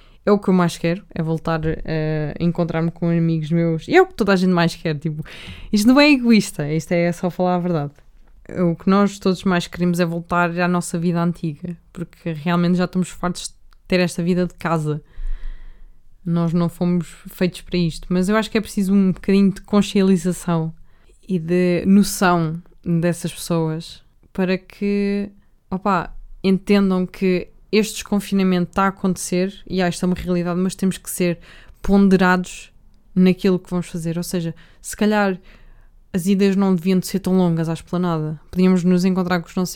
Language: Portuguese